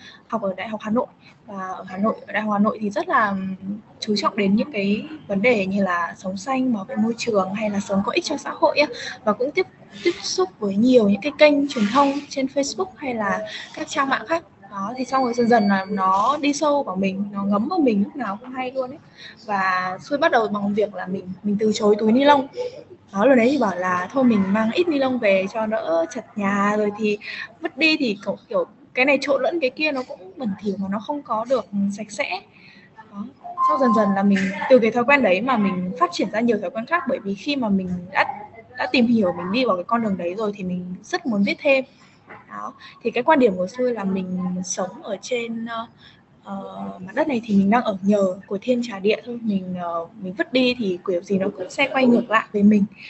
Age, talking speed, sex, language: 10-29, 255 wpm, female, Vietnamese